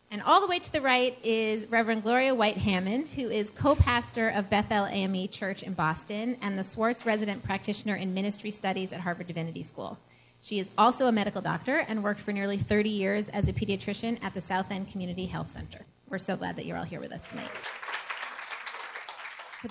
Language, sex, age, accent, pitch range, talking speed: English, female, 30-49, American, 190-230 Hz, 200 wpm